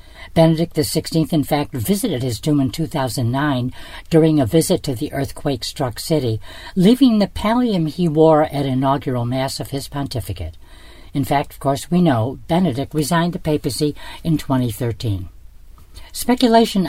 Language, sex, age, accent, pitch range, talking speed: English, female, 60-79, American, 130-160 Hz, 140 wpm